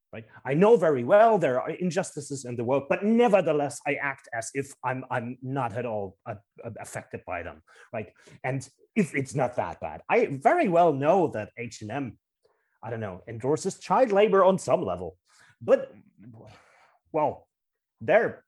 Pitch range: 130-180 Hz